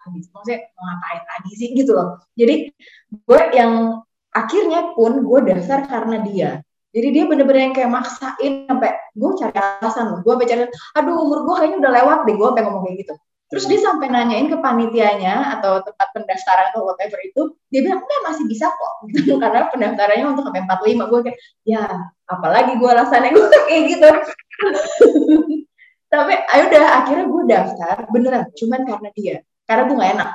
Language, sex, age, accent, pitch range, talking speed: Indonesian, female, 20-39, native, 200-295 Hz, 170 wpm